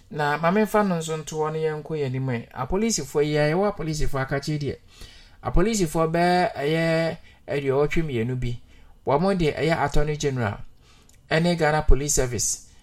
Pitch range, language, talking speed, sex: 115-160 Hz, English, 135 wpm, male